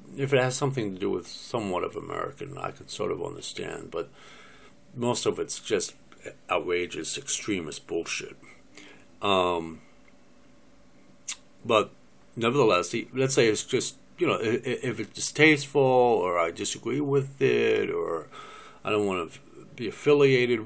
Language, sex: English, male